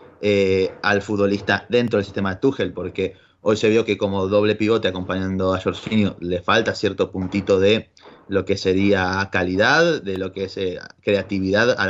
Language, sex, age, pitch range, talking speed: Spanish, male, 20-39, 100-125 Hz, 180 wpm